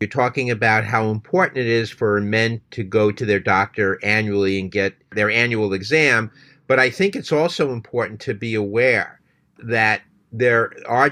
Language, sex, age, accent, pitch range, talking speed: English, male, 50-69, American, 105-130 Hz, 175 wpm